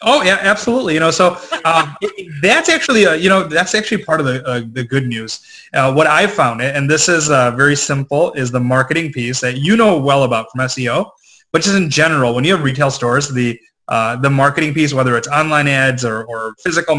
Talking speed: 225 wpm